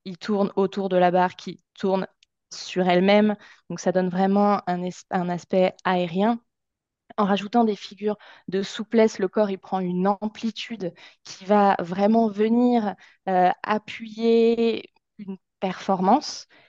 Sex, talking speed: female, 140 wpm